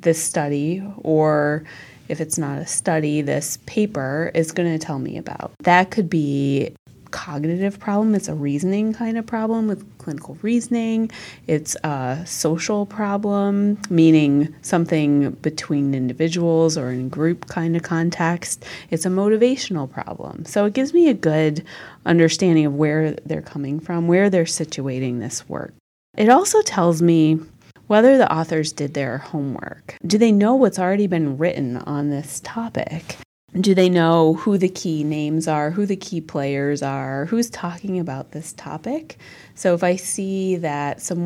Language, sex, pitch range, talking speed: English, female, 150-190 Hz, 160 wpm